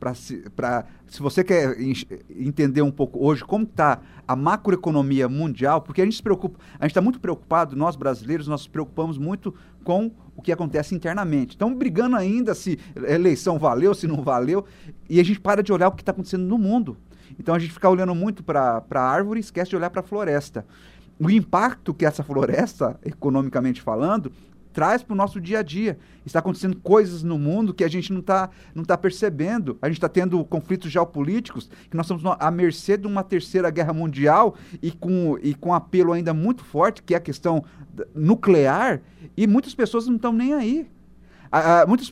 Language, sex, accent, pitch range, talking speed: Portuguese, male, Brazilian, 155-205 Hz, 200 wpm